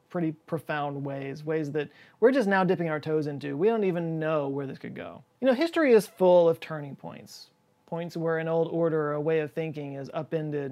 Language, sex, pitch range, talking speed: English, male, 155-195 Hz, 220 wpm